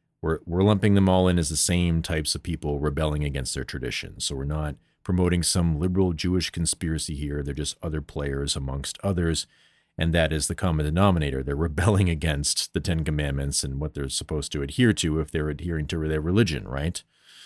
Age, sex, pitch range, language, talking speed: 40-59, male, 80-100 Hz, English, 195 wpm